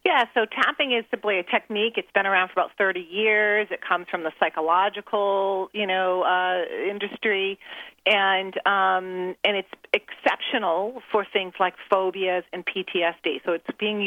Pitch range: 180-240 Hz